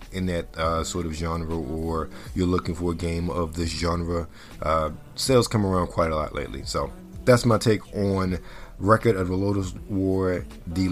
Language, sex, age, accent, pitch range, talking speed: English, male, 40-59, American, 85-105 Hz, 185 wpm